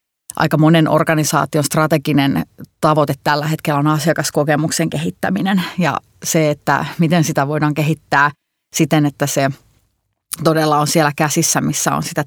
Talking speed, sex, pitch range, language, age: 130 wpm, female, 150-160 Hz, Finnish, 30-49